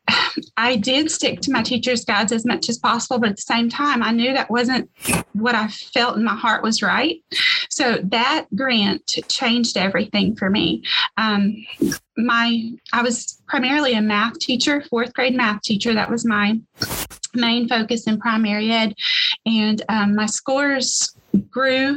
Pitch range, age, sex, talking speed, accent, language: 225-265 Hz, 30-49, female, 165 wpm, American, English